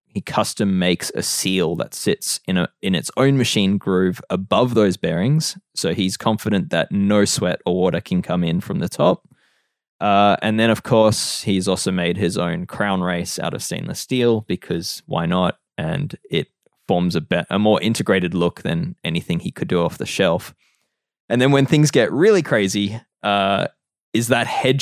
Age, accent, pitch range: 20-39, Australian, 95-120 Hz